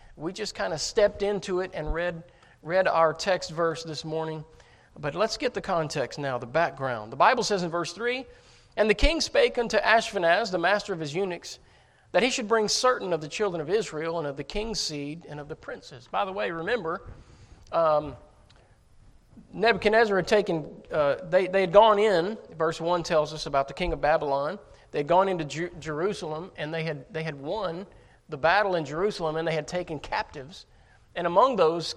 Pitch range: 150-190 Hz